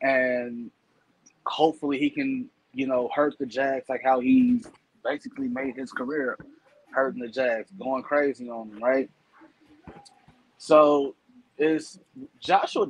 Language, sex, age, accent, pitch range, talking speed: English, male, 20-39, American, 130-185 Hz, 125 wpm